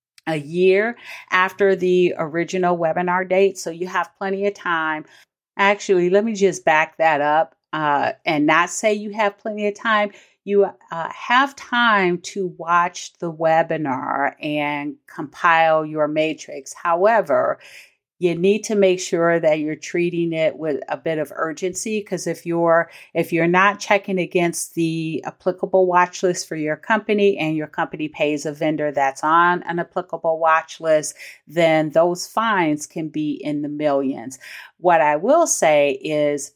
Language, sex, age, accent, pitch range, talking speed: English, female, 40-59, American, 155-195 Hz, 160 wpm